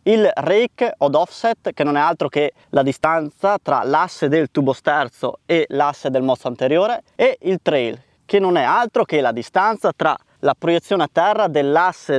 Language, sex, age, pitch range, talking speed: Italian, male, 20-39, 145-190 Hz, 180 wpm